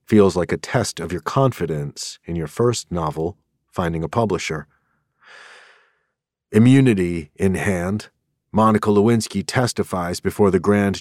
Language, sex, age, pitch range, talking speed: English, male, 40-59, 85-100 Hz, 125 wpm